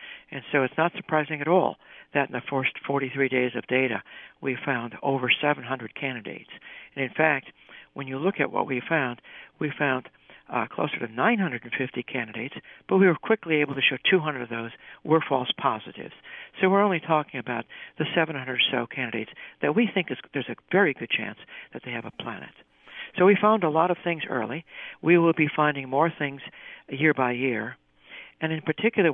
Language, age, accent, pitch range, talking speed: English, 60-79, American, 130-165 Hz, 190 wpm